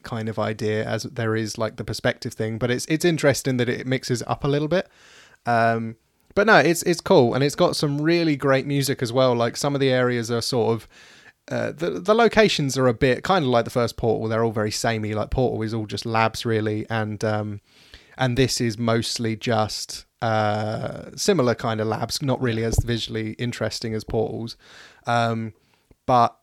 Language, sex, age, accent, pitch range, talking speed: English, male, 20-39, British, 115-130 Hz, 200 wpm